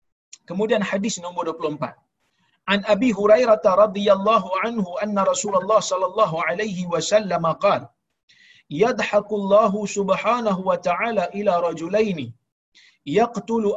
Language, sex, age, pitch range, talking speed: Malayalam, male, 50-69, 185-225 Hz, 95 wpm